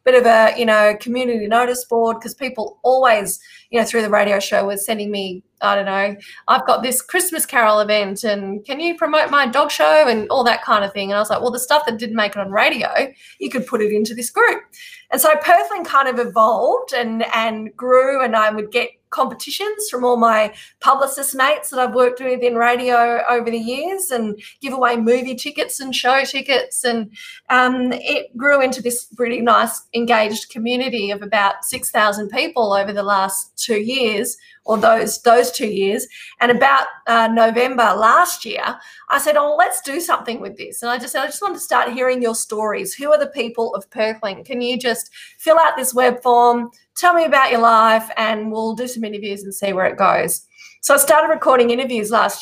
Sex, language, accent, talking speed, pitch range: female, English, Australian, 210 wpm, 220-280 Hz